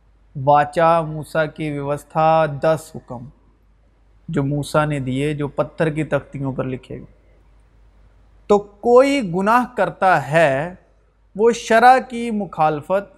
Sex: male